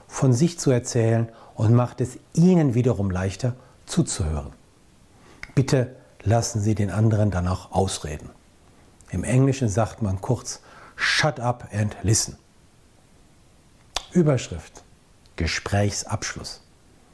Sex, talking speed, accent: male, 100 wpm, German